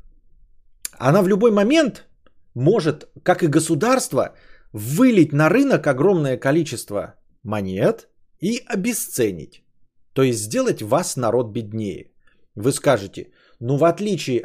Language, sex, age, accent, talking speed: Russian, male, 30-49, native, 110 wpm